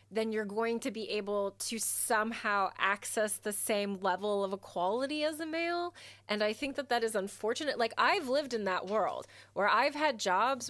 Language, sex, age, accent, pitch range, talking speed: English, female, 20-39, American, 185-235 Hz, 190 wpm